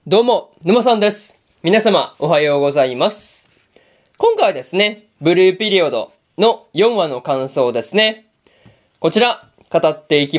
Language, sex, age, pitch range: Japanese, male, 20-39, 145-210 Hz